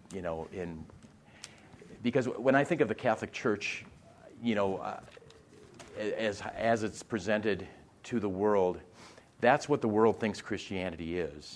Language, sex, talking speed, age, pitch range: English, male, 145 wpm, 40-59, 90-120 Hz